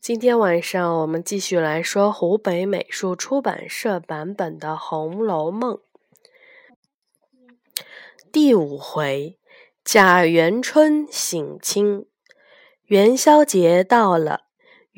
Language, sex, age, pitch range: Chinese, female, 20-39, 180-255 Hz